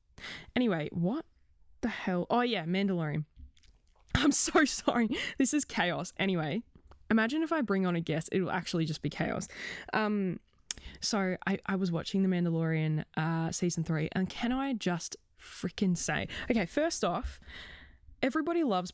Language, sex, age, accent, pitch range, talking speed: English, female, 20-39, Australian, 160-205 Hz, 150 wpm